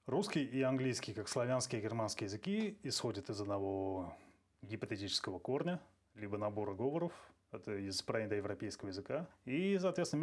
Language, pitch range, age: Russian, 105-135 Hz, 30-49